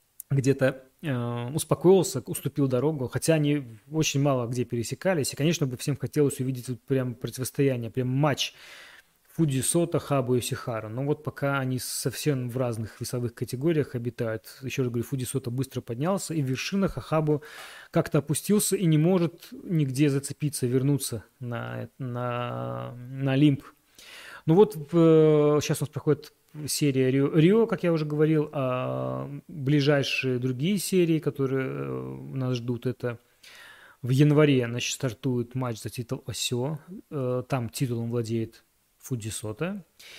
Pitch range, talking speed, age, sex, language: 125-155 Hz, 140 wpm, 20-39, male, Russian